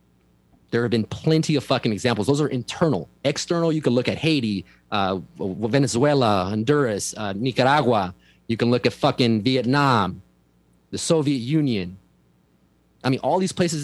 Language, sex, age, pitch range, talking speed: English, male, 30-49, 115-145 Hz, 150 wpm